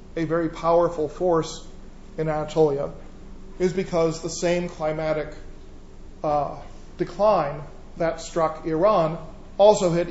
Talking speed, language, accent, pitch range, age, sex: 105 wpm, English, American, 150-175 Hz, 40-59, male